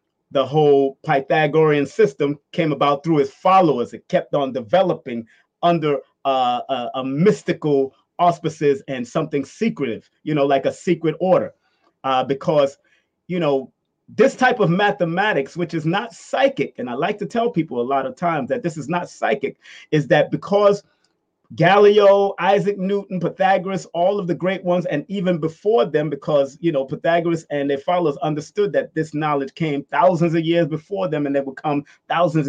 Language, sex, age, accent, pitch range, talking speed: English, male, 30-49, American, 145-180 Hz, 170 wpm